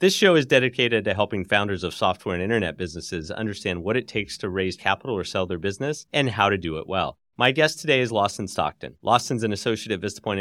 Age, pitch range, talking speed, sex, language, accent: 30-49, 95-135 Hz, 230 wpm, male, English, American